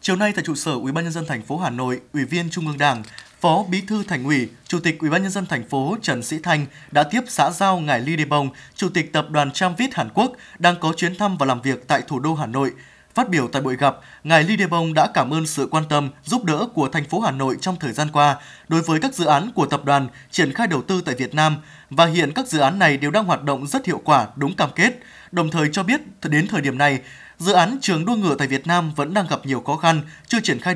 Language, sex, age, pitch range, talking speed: Vietnamese, male, 20-39, 145-185 Hz, 260 wpm